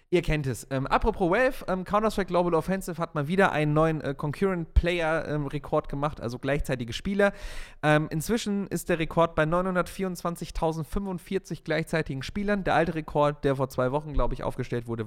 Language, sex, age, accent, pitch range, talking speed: German, male, 30-49, German, 135-185 Hz, 165 wpm